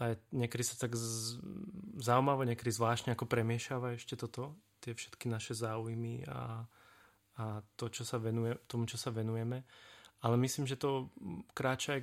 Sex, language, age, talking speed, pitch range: male, Czech, 30-49, 150 wpm, 110-125 Hz